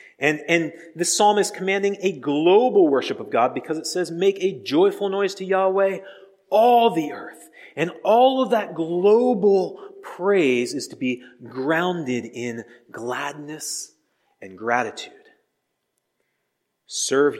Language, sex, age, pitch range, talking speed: English, male, 40-59, 135-225 Hz, 130 wpm